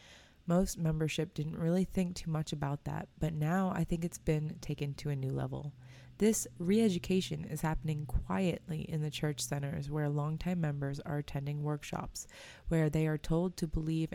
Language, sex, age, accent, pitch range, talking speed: English, female, 20-39, American, 145-170 Hz, 175 wpm